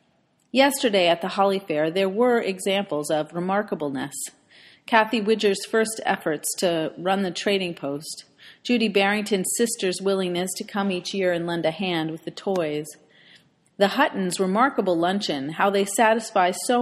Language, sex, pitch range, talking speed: English, female, 170-215 Hz, 150 wpm